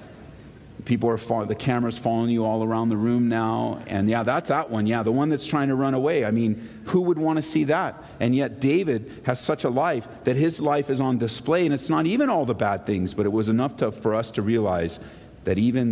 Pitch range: 105-145 Hz